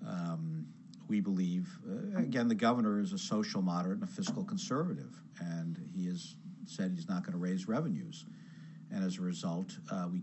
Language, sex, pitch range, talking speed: English, male, 175-205 Hz, 180 wpm